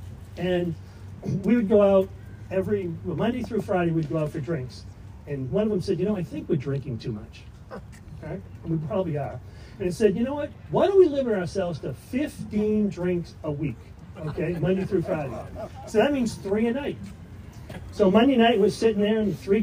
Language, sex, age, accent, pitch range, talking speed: English, male, 40-59, American, 135-205 Hz, 210 wpm